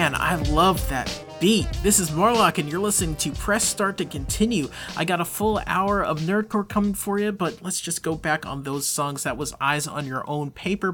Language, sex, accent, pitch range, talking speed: English, male, American, 140-185 Hz, 220 wpm